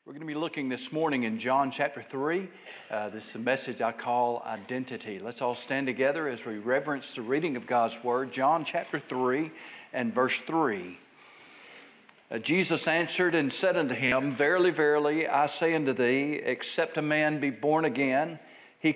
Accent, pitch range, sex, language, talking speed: American, 125-160 Hz, male, English, 175 wpm